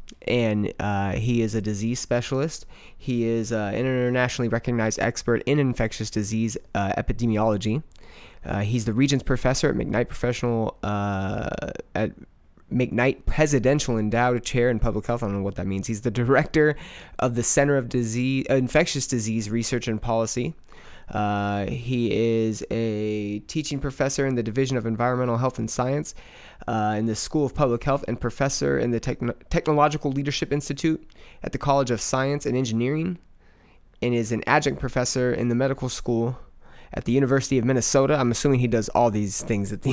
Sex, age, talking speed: male, 20-39, 170 wpm